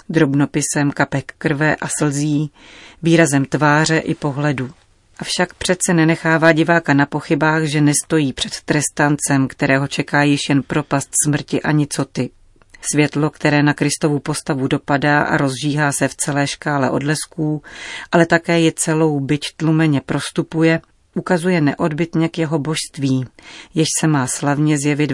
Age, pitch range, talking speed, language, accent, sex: 40-59, 140-160 Hz, 135 wpm, Czech, native, female